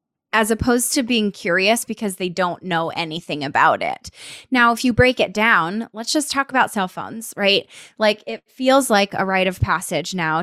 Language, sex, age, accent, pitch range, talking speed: English, female, 20-39, American, 180-250 Hz, 195 wpm